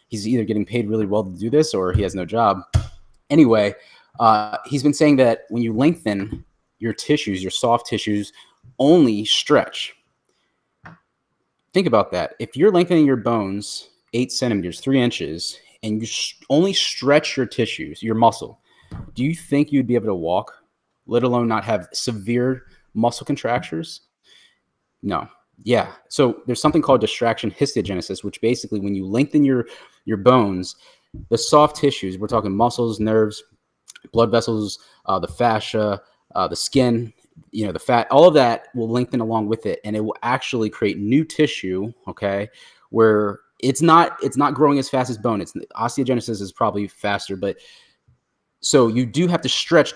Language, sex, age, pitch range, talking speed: English, male, 30-49, 105-130 Hz, 165 wpm